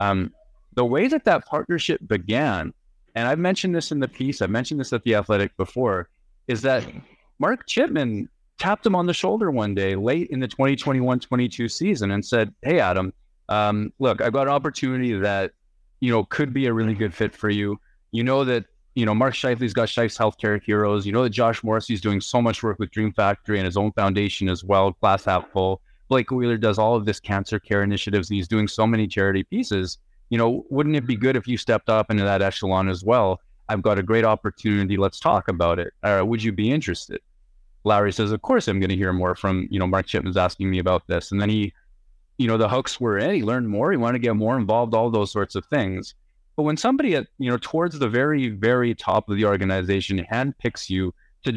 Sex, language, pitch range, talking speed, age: male, English, 100-125 Hz, 225 wpm, 30-49